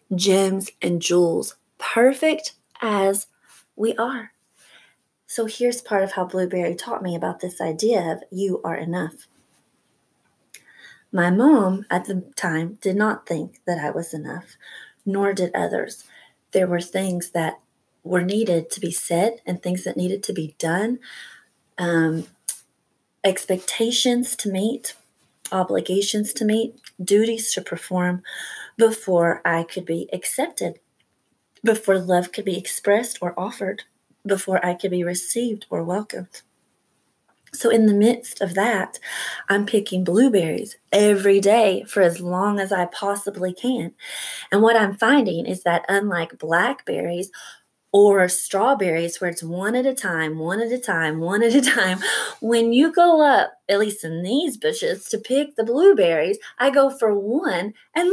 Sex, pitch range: female, 180-230 Hz